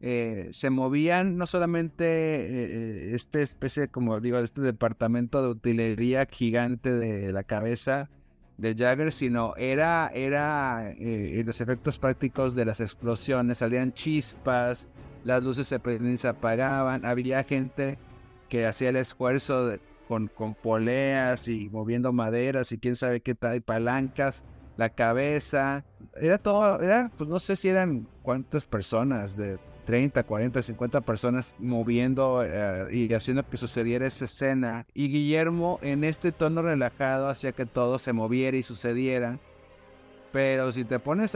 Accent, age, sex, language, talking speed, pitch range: Mexican, 50-69, male, Spanish, 145 wpm, 115-140 Hz